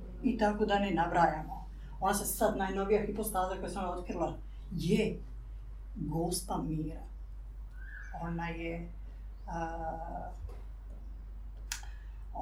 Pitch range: 145-200 Hz